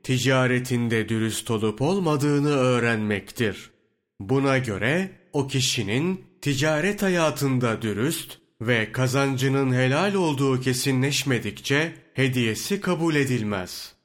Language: Turkish